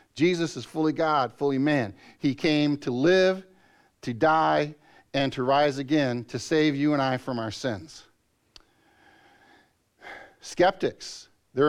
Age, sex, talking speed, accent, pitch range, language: 50-69, male, 135 wpm, American, 125-150 Hz, English